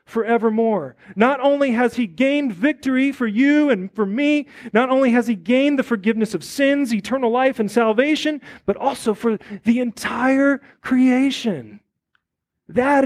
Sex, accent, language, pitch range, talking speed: male, American, English, 185-255 Hz, 145 wpm